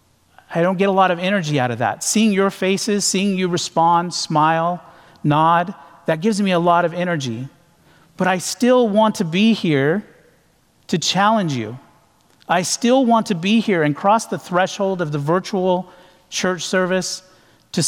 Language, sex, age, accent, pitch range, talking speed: English, male, 40-59, American, 145-195 Hz, 170 wpm